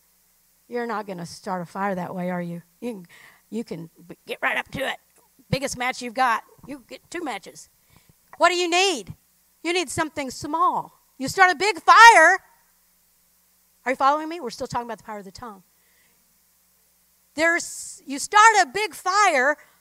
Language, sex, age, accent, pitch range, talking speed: English, female, 50-69, American, 240-335 Hz, 180 wpm